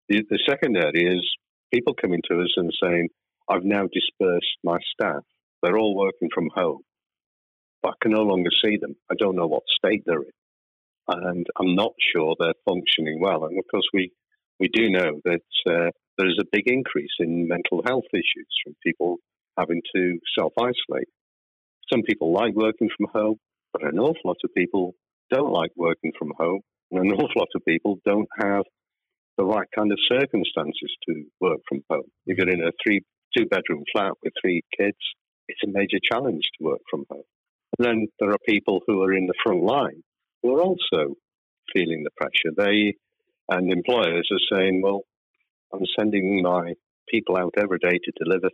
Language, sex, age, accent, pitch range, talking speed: English, male, 50-69, British, 85-100 Hz, 180 wpm